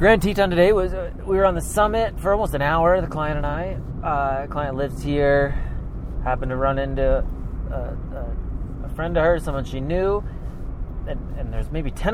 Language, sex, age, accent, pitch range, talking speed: English, male, 30-49, American, 110-140 Hz, 195 wpm